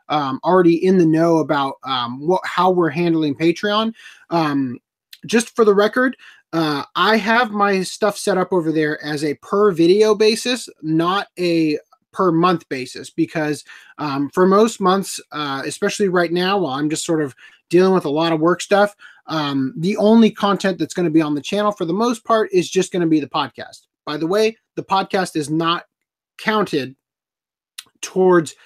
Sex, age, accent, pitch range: male, 30-49, American, 155-200 Hz